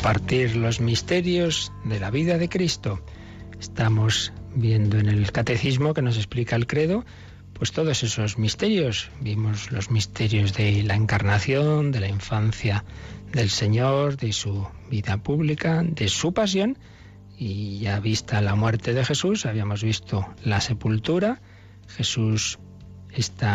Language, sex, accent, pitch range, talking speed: Spanish, male, Spanish, 105-140 Hz, 135 wpm